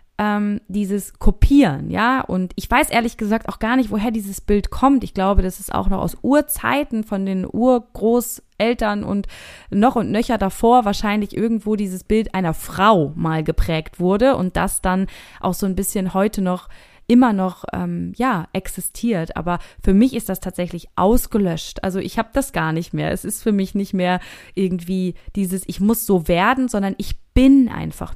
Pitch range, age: 175-215 Hz, 20-39